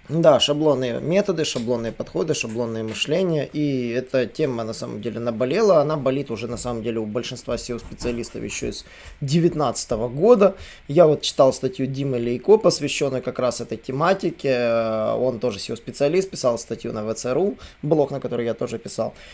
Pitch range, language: 125-165 Hz, Russian